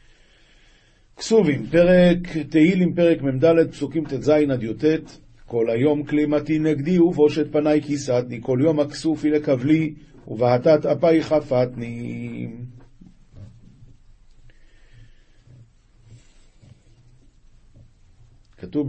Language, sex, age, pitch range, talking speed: Hebrew, male, 50-69, 120-155 Hz, 75 wpm